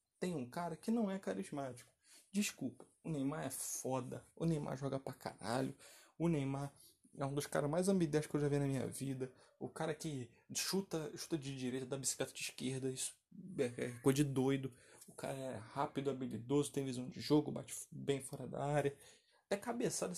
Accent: Brazilian